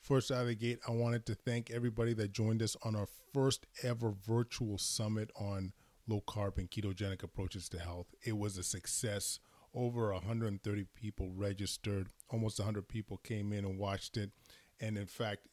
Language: English